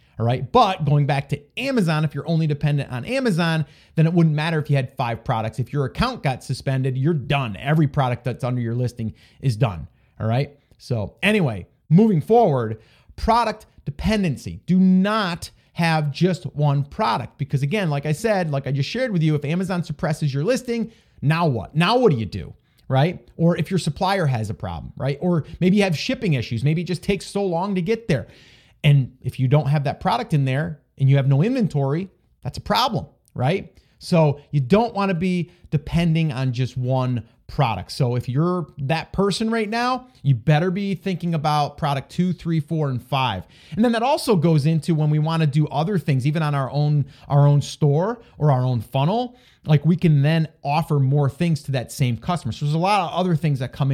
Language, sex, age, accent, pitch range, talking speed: English, male, 30-49, American, 135-175 Hz, 210 wpm